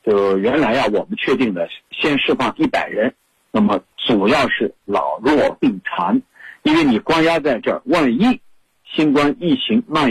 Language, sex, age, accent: Chinese, male, 50-69, native